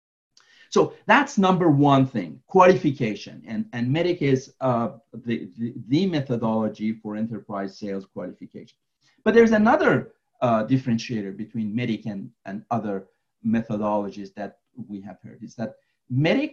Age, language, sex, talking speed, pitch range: 50-69, English, male, 135 wpm, 115-175 Hz